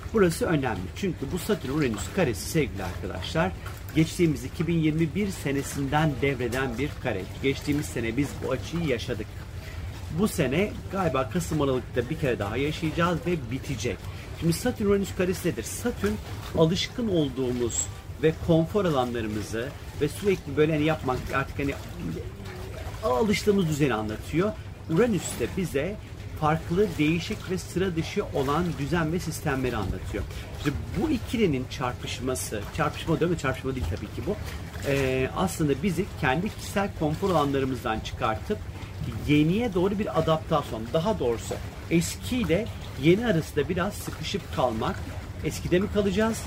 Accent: native